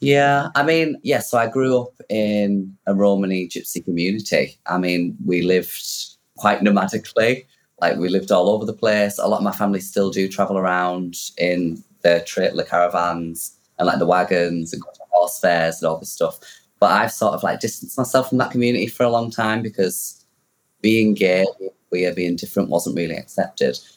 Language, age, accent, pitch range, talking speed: English, 20-39, British, 85-110 Hz, 190 wpm